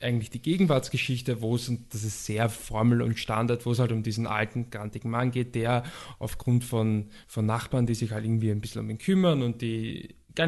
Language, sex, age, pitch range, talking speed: German, male, 20-39, 115-130 Hz, 220 wpm